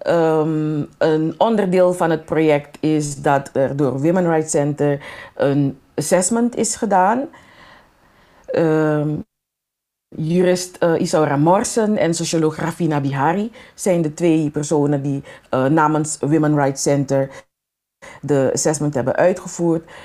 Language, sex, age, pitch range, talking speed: Dutch, female, 40-59, 145-180 Hz, 120 wpm